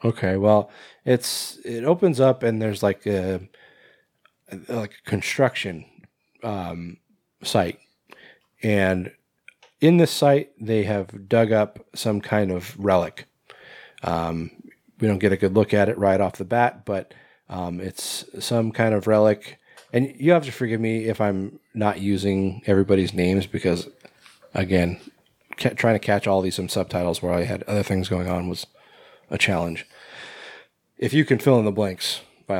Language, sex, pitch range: English, male, 95-115 Hz